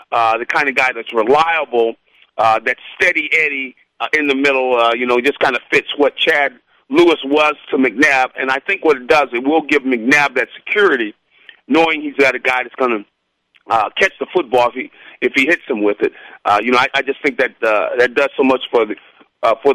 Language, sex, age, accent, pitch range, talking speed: English, male, 40-59, American, 125-165 Hz, 225 wpm